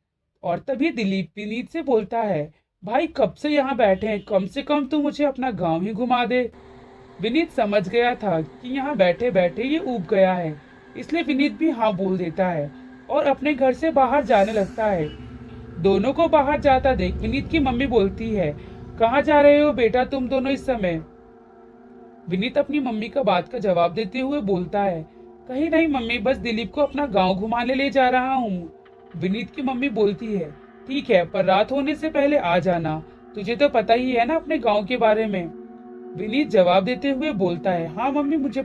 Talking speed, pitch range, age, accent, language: 175 wpm, 185-275 Hz, 40-59, native, Hindi